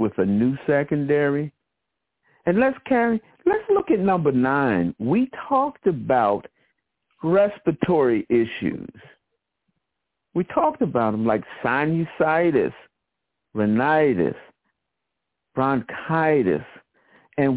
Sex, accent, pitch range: male, American, 120-155 Hz